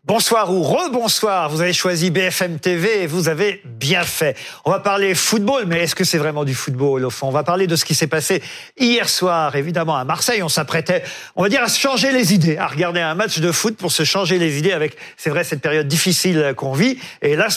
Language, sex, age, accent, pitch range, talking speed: French, male, 50-69, French, 150-200 Hz, 240 wpm